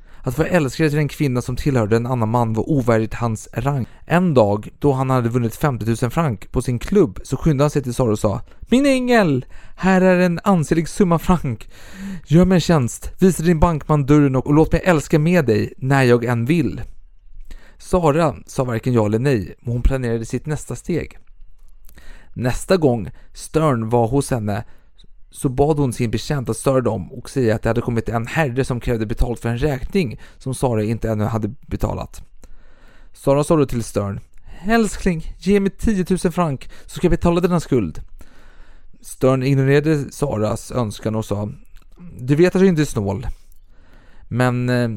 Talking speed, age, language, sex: 185 wpm, 30-49, Swedish, male